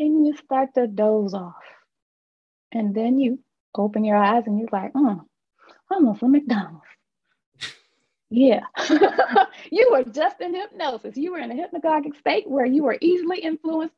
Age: 20-39